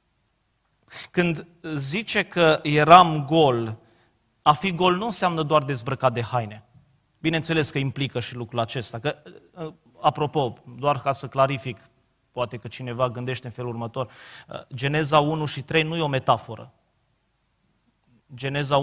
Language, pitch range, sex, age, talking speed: Romanian, 135-175 Hz, male, 30-49, 135 wpm